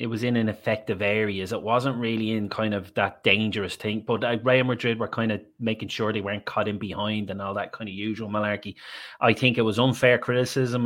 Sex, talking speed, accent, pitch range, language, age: male, 230 wpm, Irish, 105-125 Hz, English, 30-49